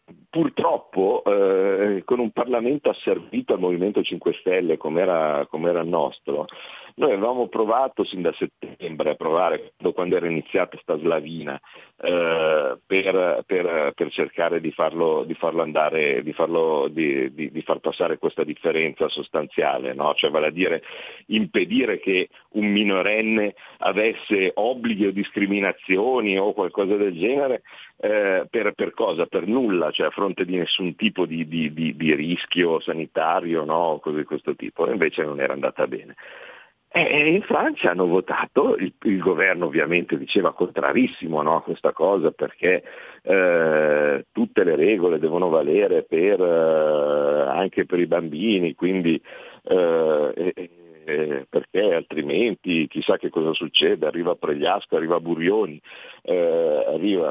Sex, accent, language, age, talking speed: male, native, Italian, 50-69, 135 wpm